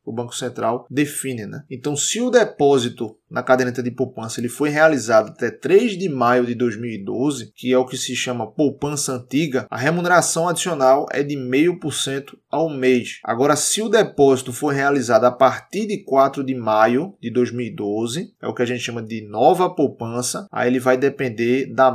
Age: 20-39